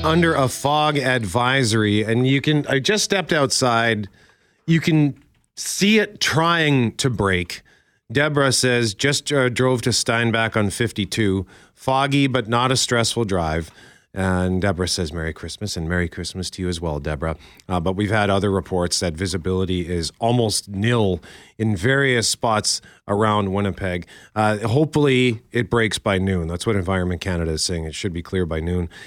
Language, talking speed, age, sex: English, 165 wpm, 40-59, male